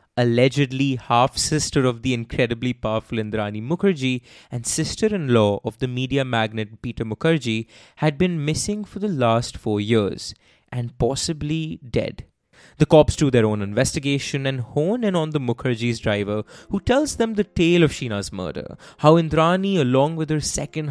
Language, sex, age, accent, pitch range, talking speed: English, male, 20-39, Indian, 115-160 Hz, 155 wpm